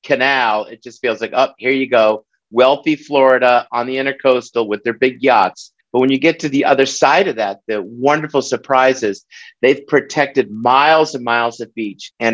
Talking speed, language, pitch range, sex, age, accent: 190 wpm, English, 110-135 Hz, male, 50-69, American